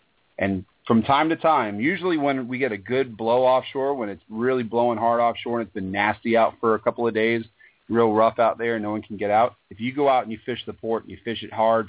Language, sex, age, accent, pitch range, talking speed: English, male, 40-59, American, 100-115 Hz, 270 wpm